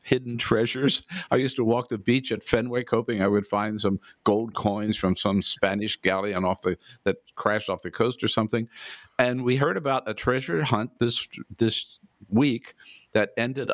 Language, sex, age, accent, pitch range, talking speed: English, male, 60-79, American, 110-130 Hz, 185 wpm